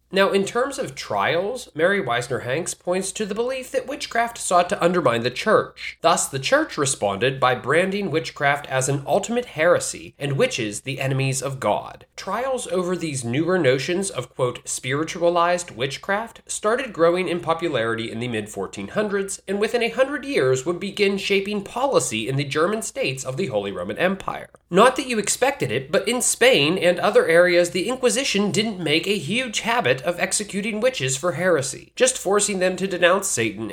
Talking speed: 175 wpm